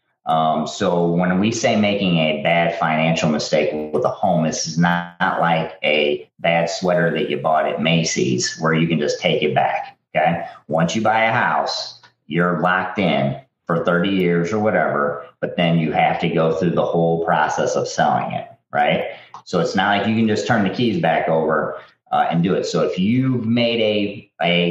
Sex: male